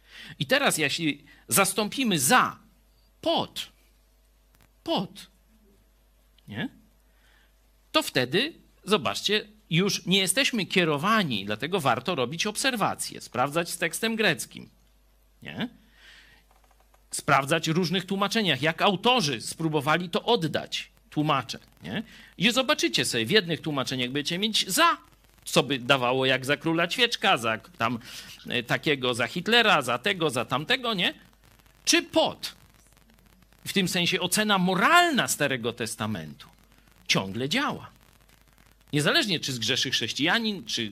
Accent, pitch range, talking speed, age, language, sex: native, 145-215 Hz, 110 wpm, 50-69, Polish, male